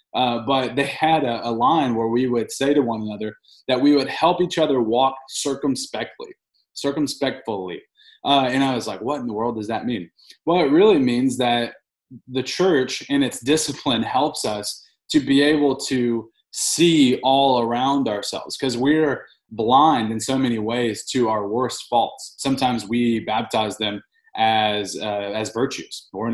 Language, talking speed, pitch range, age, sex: English, 170 wpm, 105-140 Hz, 20-39, male